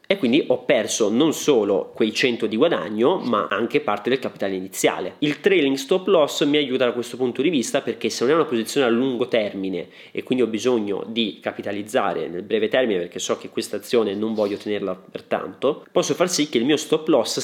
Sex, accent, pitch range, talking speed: male, native, 105-165 Hz, 215 wpm